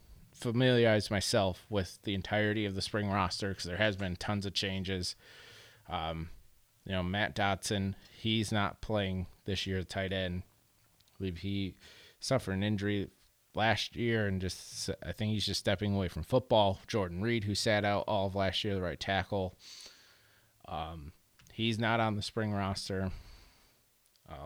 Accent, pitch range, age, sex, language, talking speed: American, 95-110 Hz, 30-49, male, English, 165 wpm